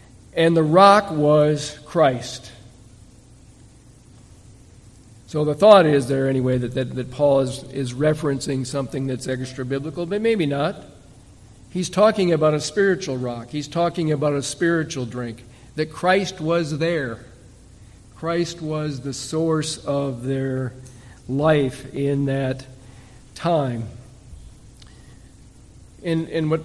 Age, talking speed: 50-69, 120 wpm